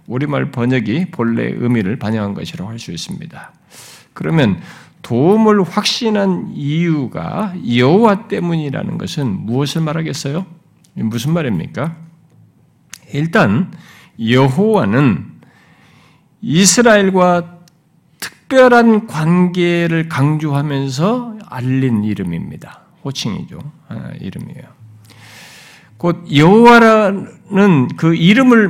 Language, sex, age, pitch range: Korean, male, 50-69, 140-200 Hz